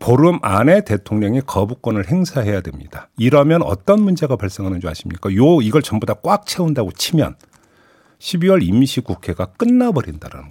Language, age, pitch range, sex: Korean, 50-69, 100-160 Hz, male